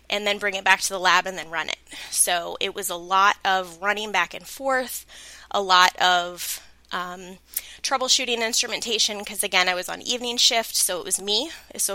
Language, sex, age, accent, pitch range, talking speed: English, female, 20-39, American, 175-205 Hz, 200 wpm